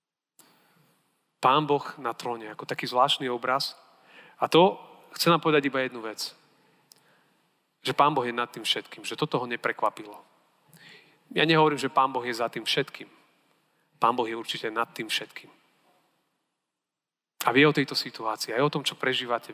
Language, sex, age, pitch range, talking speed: Slovak, male, 30-49, 120-150 Hz, 165 wpm